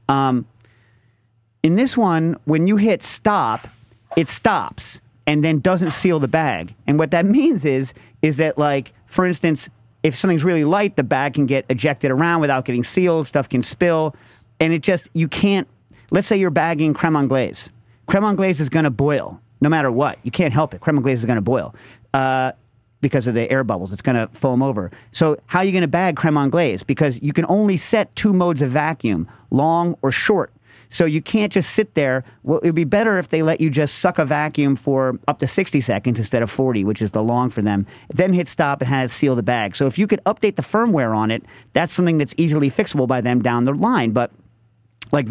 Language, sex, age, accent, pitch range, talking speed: English, male, 40-59, American, 120-170 Hz, 220 wpm